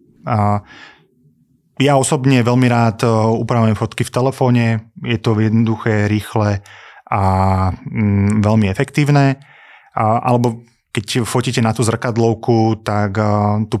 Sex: male